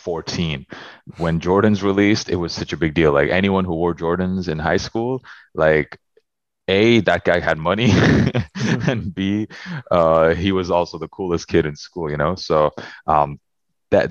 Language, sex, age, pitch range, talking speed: English, male, 20-39, 80-95 Hz, 170 wpm